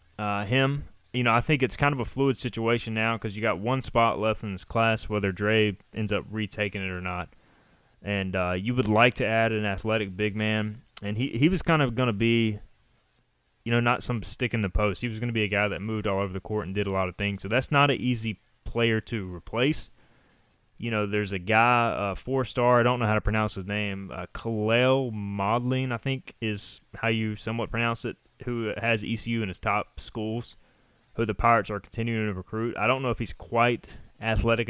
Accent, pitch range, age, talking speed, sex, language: American, 105-120 Hz, 20-39, 230 wpm, male, English